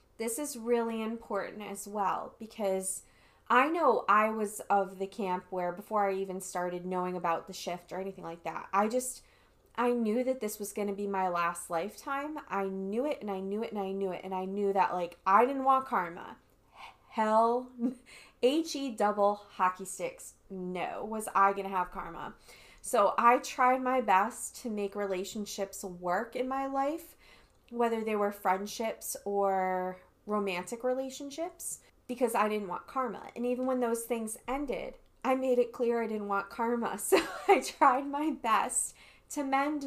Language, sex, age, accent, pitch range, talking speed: English, female, 20-39, American, 190-245 Hz, 175 wpm